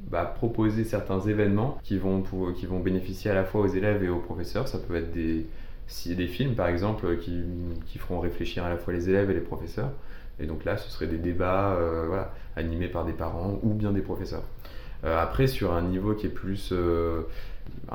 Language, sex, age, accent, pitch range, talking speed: French, male, 20-39, French, 85-100 Hz, 210 wpm